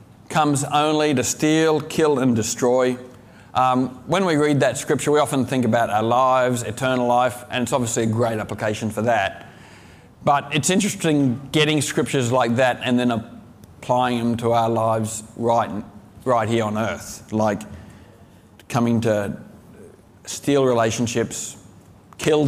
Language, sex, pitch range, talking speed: English, male, 115-150 Hz, 145 wpm